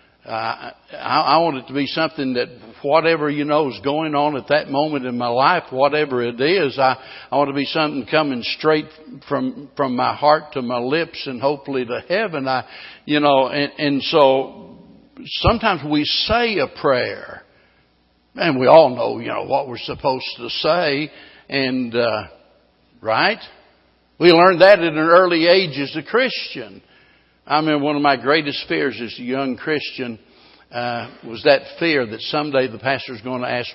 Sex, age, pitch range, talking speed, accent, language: male, 60-79, 120-150 Hz, 180 wpm, American, English